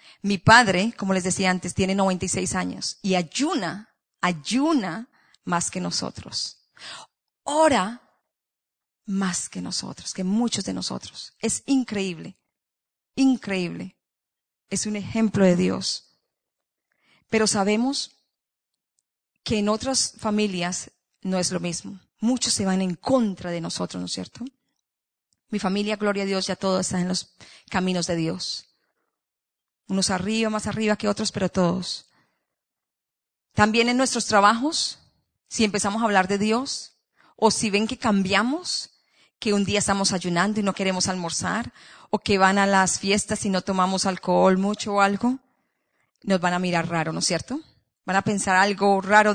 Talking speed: 150 wpm